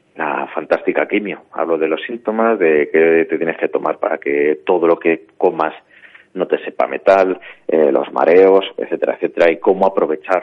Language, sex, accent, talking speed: Spanish, male, Spanish, 180 wpm